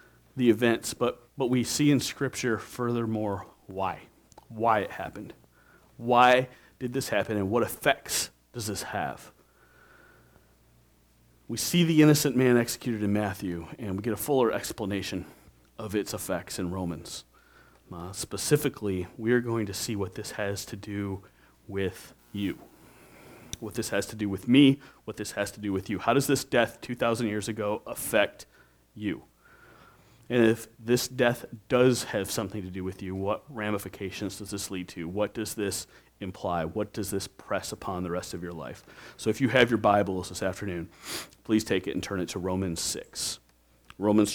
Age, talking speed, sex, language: 30-49, 175 wpm, male, English